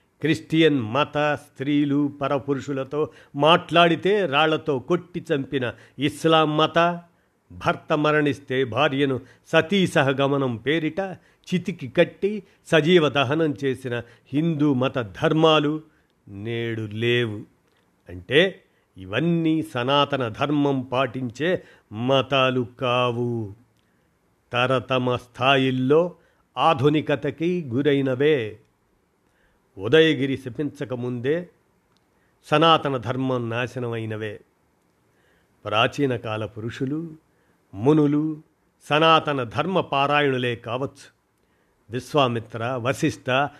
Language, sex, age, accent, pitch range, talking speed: Telugu, male, 50-69, native, 125-155 Hz, 70 wpm